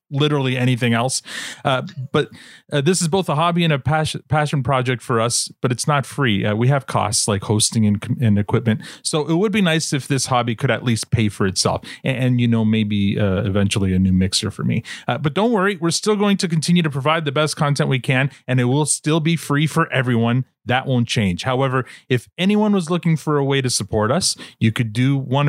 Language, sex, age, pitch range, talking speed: English, male, 30-49, 120-160 Hz, 230 wpm